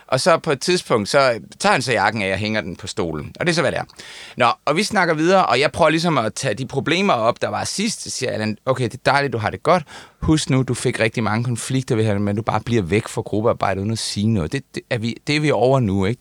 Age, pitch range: 30-49, 110-145 Hz